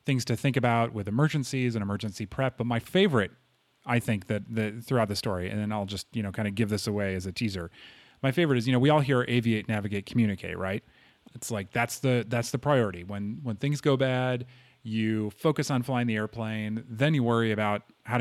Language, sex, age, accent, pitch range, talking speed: English, male, 30-49, American, 105-125 Hz, 225 wpm